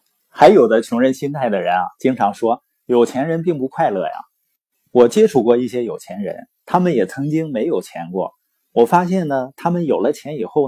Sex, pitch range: male, 120-170 Hz